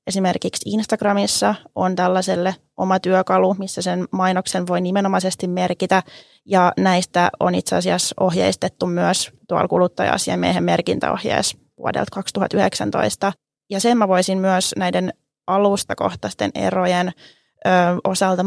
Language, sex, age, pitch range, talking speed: Finnish, female, 20-39, 175-195 Hz, 105 wpm